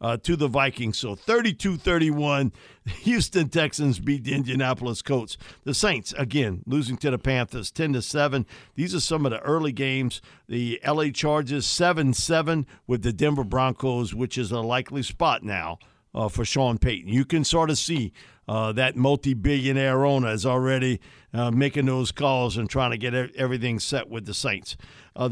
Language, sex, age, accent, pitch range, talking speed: English, male, 50-69, American, 120-155 Hz, 170 wpm